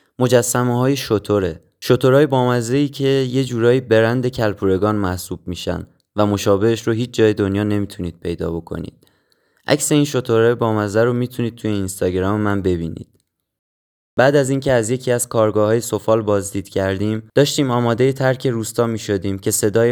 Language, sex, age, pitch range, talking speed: Persian, male, 20-39, 100-125 Hz, 150 wpm